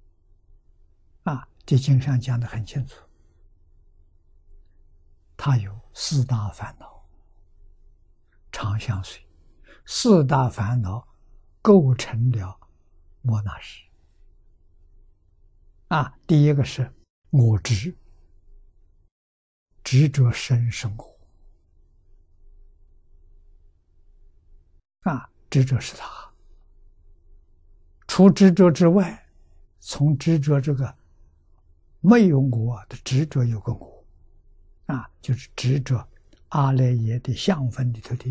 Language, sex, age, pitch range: Chinese, male, 60-79, 80-130 Hz